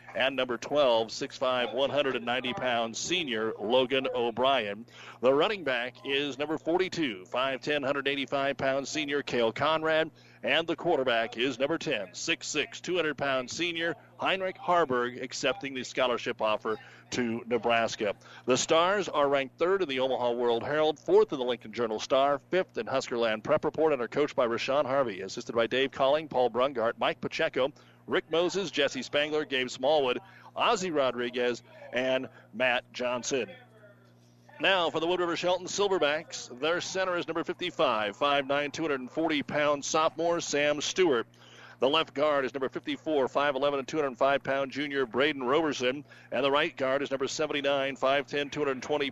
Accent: American